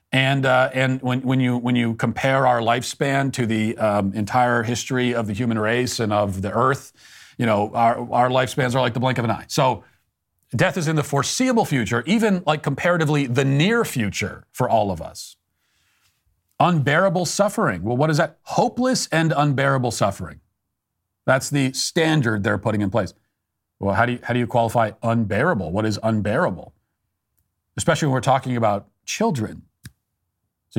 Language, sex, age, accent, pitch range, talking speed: English, male, 40-59, American, 105-140 Hz, 175 wpm